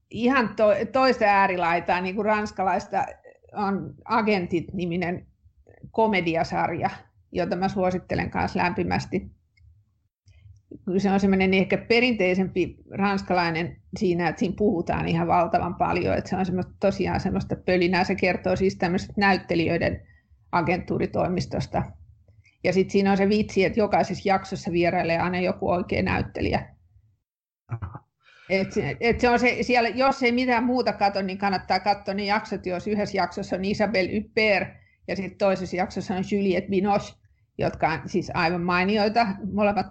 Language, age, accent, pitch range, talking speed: Finnish, 50-69, native, 170-205 Hz, 130 wpm